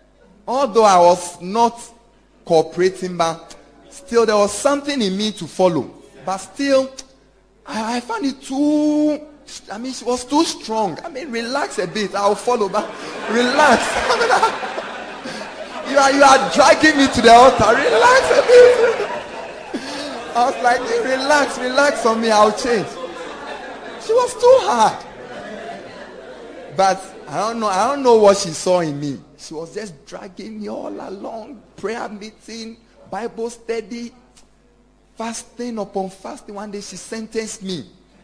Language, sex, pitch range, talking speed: English, male, 185-255 Hz, 145 wpm